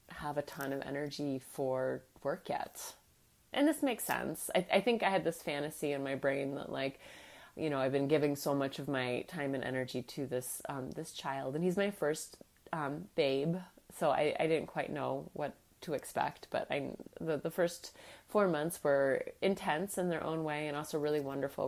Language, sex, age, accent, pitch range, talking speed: English, female, 30-49, American, 135-160 Hz, 200 wpm